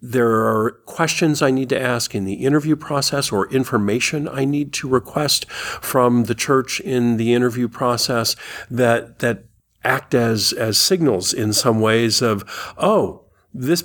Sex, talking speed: male, 155 wpm